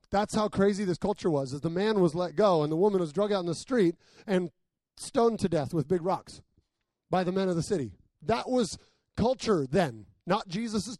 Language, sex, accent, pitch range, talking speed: English, male, American, 160-230 Hz, 220 wpm